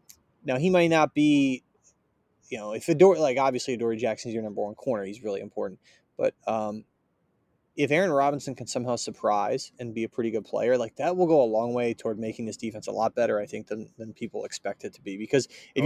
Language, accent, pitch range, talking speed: English, American, 120-165 Hz, 225 wpm